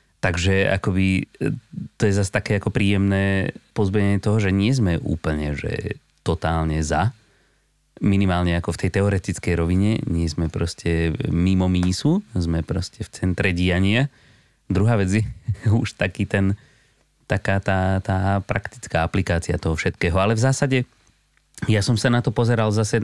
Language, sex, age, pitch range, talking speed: Slovak, male, 30-49, 85-110 Hz, 145 wpm